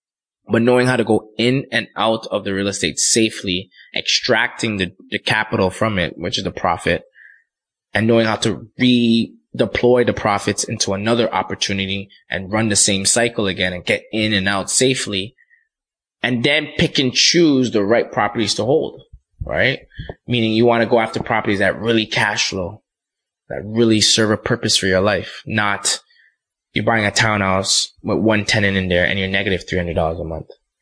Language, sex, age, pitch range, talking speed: English, male, 20-39, 100-120 Hz, 175 wpm